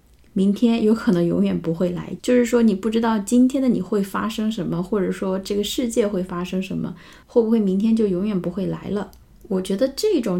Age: 20-39